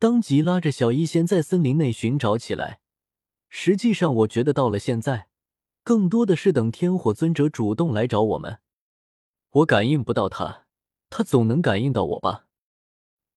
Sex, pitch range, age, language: male, 120-175 Hz, 20-39, Chinese